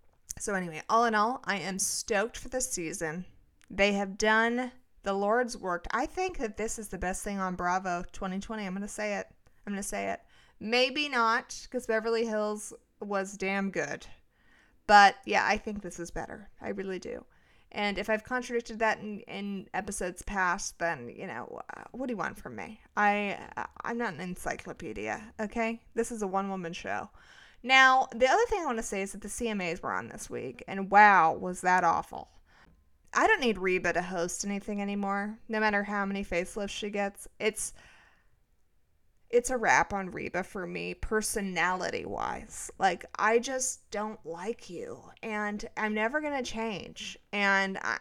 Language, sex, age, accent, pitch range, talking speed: English, female, 30-49, American, 190-225 Hz, 180 wpm